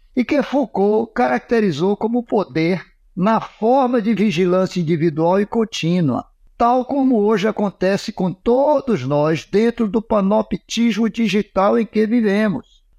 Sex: male